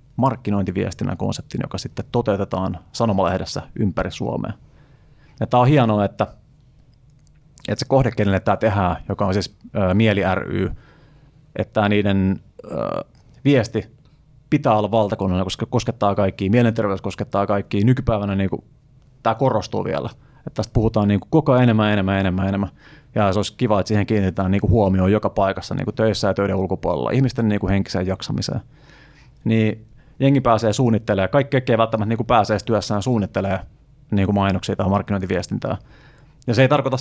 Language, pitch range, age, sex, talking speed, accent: Finnish, 100-130 Hz, 30-49, male, 150 wpm, native